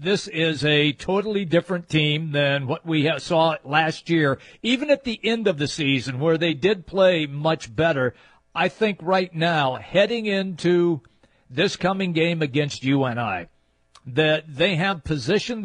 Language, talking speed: English, 155 wpm